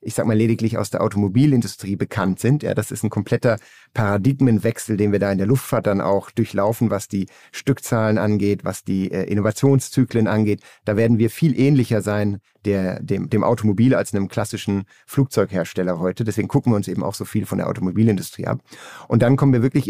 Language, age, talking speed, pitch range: German, 50-69, 195 wpm, 105-130 Hz